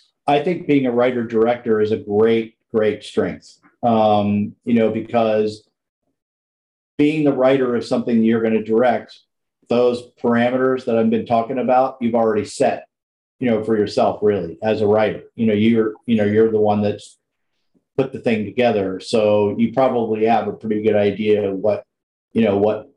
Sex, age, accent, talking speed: male, 40-59, American, 180 wpm